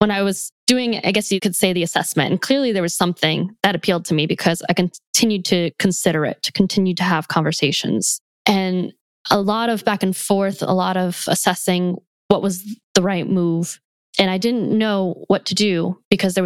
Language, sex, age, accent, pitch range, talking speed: English, female, 10-29, American, 180-205 Hz, 205 wpm